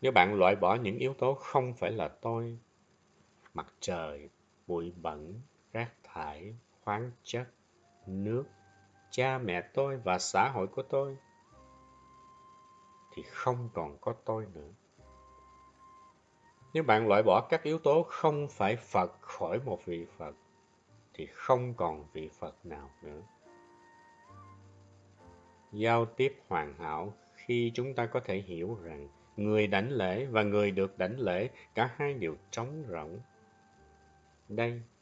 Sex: male